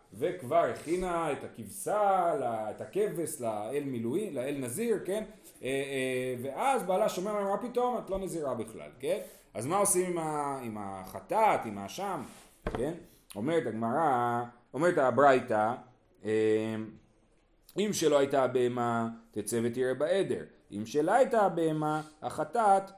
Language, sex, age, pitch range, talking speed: Hebrew, male, 40-59, 125-200 Hz, 120 wpm